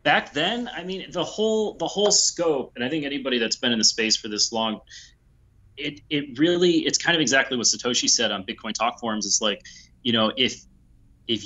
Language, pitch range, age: English, 110-130 Hz, 30-49